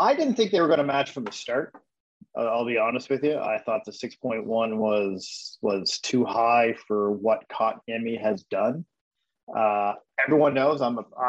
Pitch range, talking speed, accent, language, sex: 110-135 Hz, 190 wpm, American, English, male